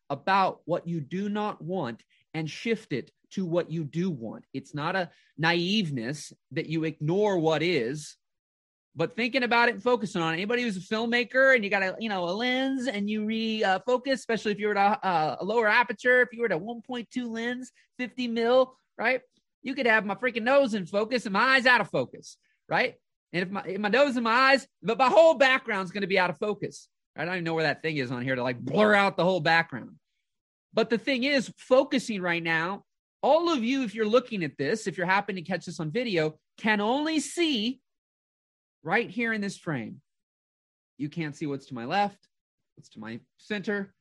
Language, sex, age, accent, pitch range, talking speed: English, male, 30-49, American, 170-245 Hz, 215 wpm